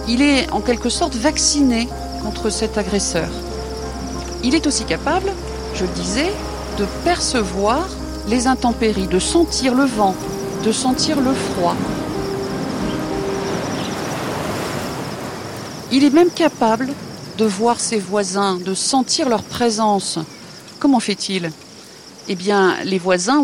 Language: French